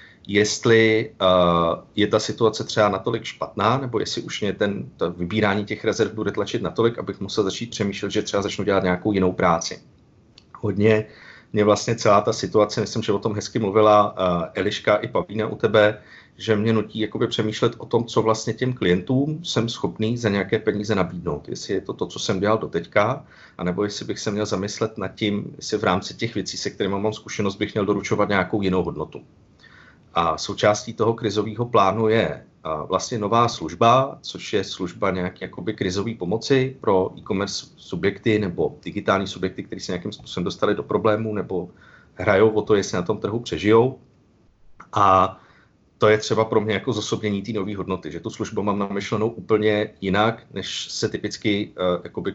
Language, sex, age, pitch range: Czech, male, 40-59, 95-110 Hz